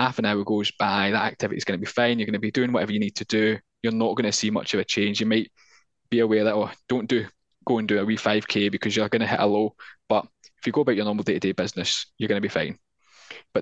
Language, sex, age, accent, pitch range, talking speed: English, male, 10-29, British, 105-120 Hz, 295 wpm